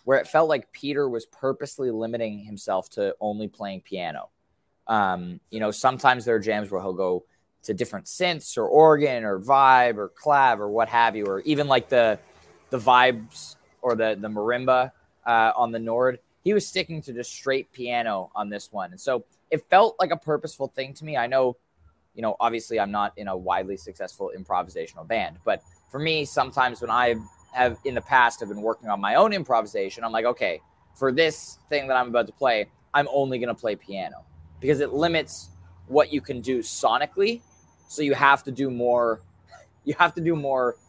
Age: 20-39